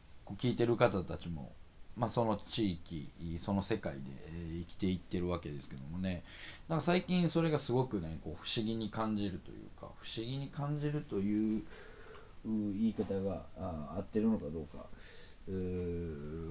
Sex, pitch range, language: male, 80-100 Hz, Japanese